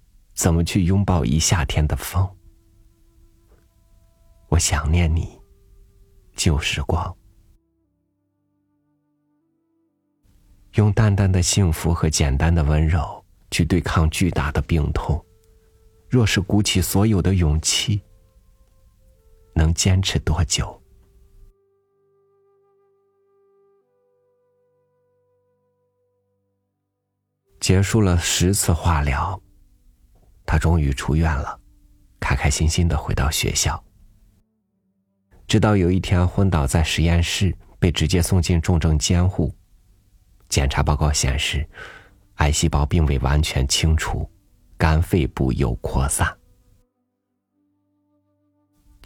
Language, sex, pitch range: Chinese, male, 80-100 Hz